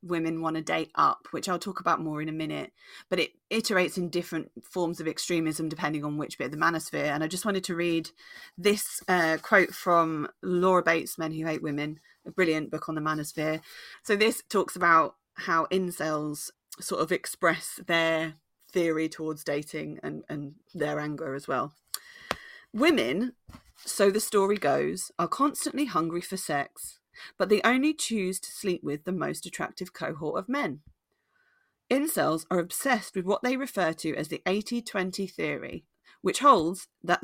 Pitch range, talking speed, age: 160-215 Hz, 175 wpm, 30-49